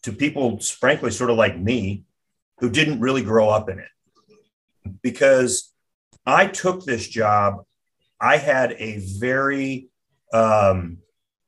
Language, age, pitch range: English, 40-59, 105-130 Hz